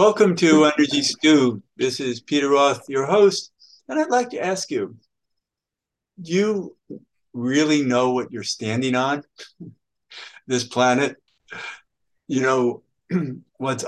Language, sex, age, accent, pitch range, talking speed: English, male, 60-79, American, 105-140 Hz, 125 wpm